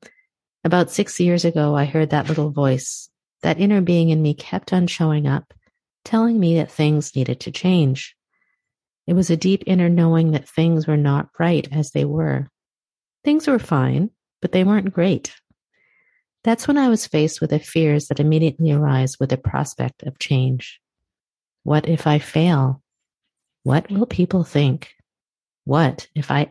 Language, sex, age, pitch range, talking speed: English, female, 50-69, 145-185 Hz, 165 wpm